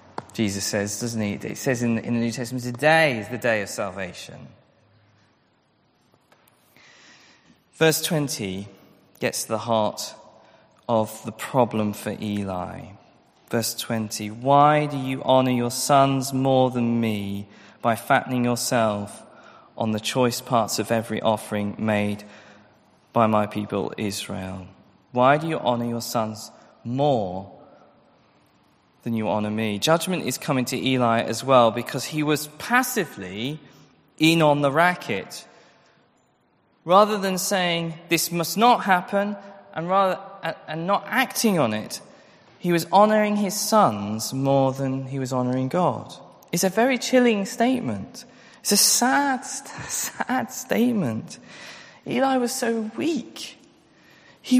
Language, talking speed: English, 130 wpm